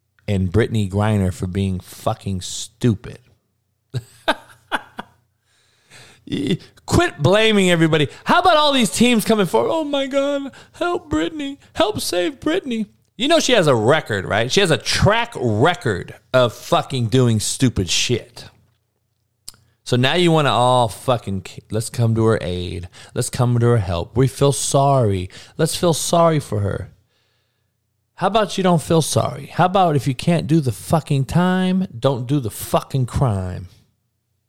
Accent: American